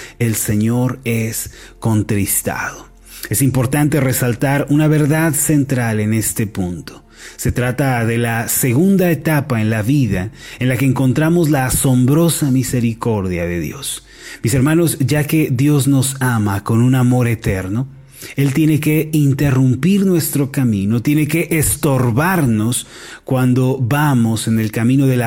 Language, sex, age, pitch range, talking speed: Spanish, male, 30-49, 115-145 Hz, 140 wpm